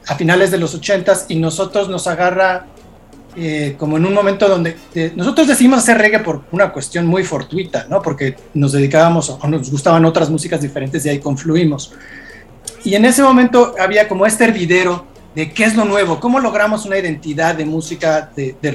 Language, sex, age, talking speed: Spanish, male, 40-59, 190 wpm